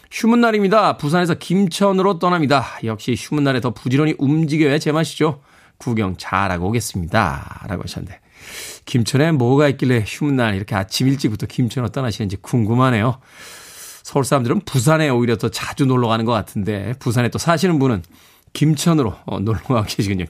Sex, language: male, Korean